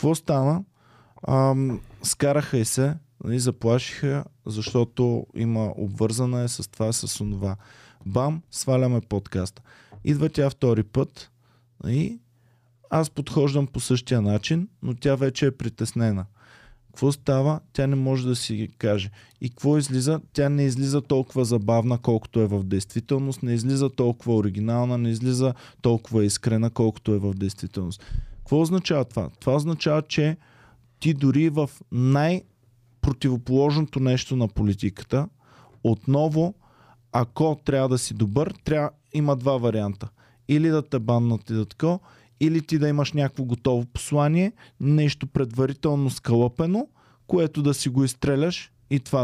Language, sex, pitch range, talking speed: Bulgarian, male, 115-145 Hz, 135 wpm